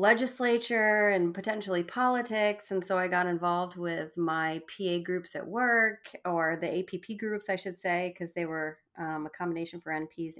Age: 30-49